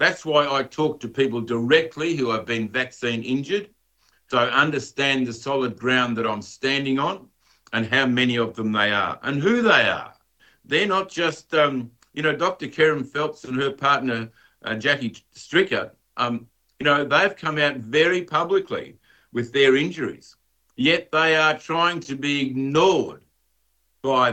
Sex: male